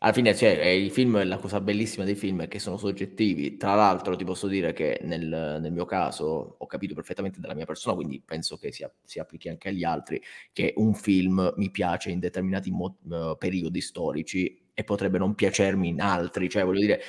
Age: 20-39